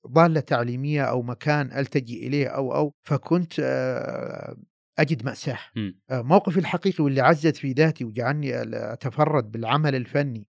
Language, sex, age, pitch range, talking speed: Arabic, male, 50-69, 125-150 Hz, 120 wpm